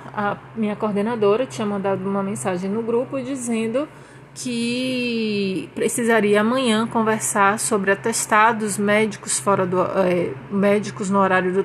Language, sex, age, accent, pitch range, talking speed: Portuguese, female, 20-39, Brazilian, 190-260 Hz, 125 wpm